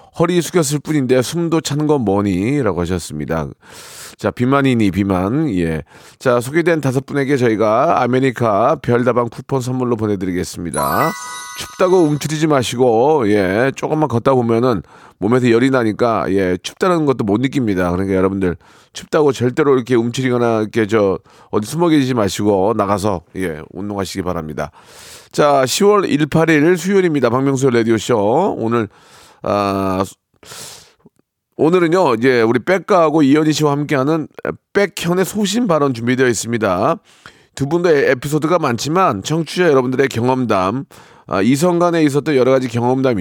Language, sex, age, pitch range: Korean, male, 40-59, 105-155 Hz